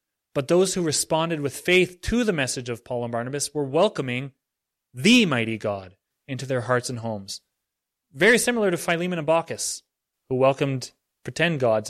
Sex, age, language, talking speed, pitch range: male, 30-49, English, 165 wpm, 130-175 Hz